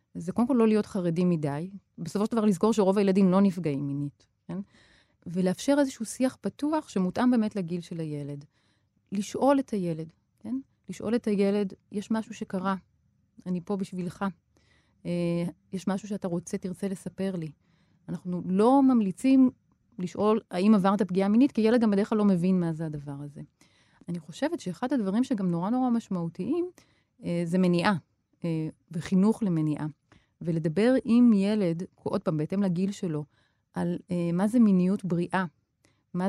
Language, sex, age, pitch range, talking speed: Hebrew, female, 30-49, 170-215 Hz, 150 wpm